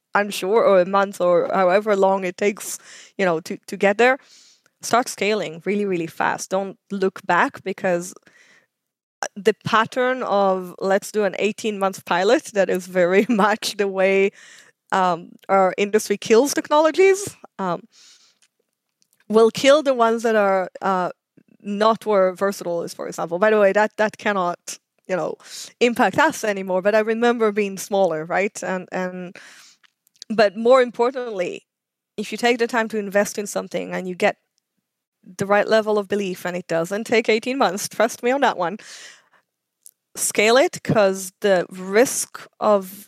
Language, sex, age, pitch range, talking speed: English, female, 20-39, 190-225 Hz, 160 wpm